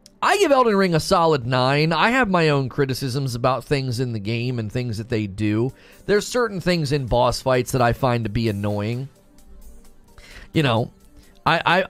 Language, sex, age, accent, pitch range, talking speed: English, male, 30-49, American, 115-150 Hz, 185 wpm